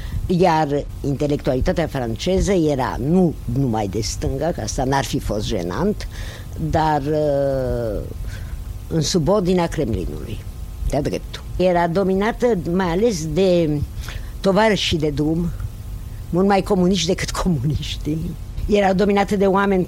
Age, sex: 60-79, female